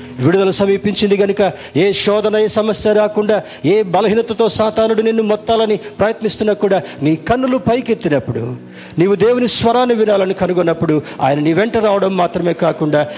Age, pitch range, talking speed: 50-69, 155-220 Hz, 130 wpm